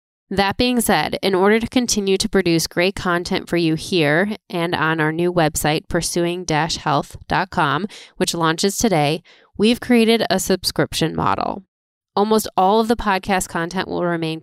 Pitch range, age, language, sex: 170-205 Hz, 20-39, English, female